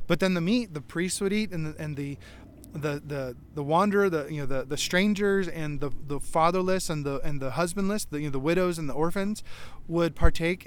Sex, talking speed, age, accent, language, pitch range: male, 230 wpm, 30-49, American, English, 145-180 Hz